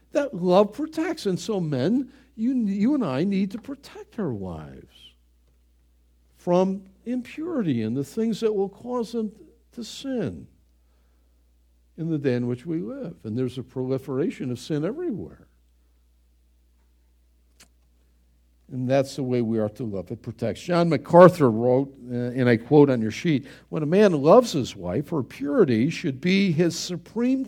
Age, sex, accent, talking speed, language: 60-79, male, American, 155 wpm, English